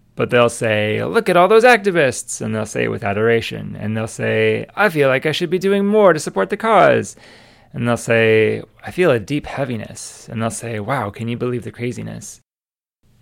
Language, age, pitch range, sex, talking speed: English, 20-39, 110-120 Hz, male, 210 wpm